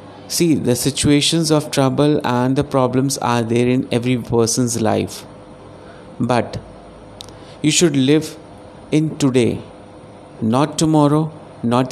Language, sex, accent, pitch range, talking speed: Hindi, male, native, 115-145 Hz, 115 wpm